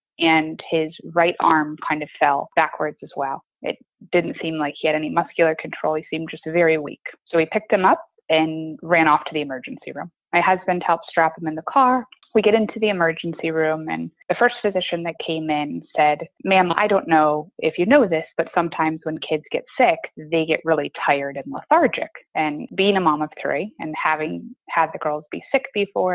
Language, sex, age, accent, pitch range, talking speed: English, female, 20-39, American, 155-190 Hz, 210 wpm